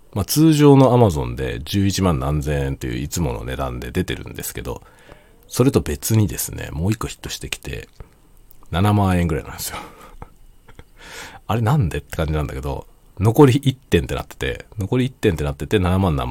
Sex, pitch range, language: male, 70-110 Hz, Japanese